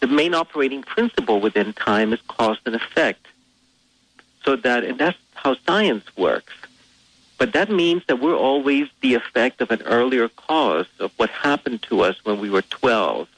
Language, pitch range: English, 110-145 Hz